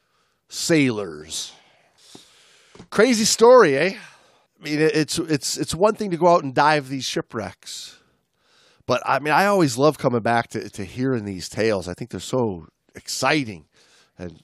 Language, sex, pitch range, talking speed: English, male, 115-165 Hz, 155 wpm